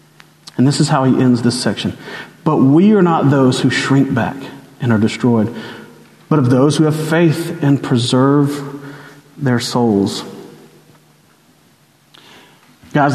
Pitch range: 130-165 Hz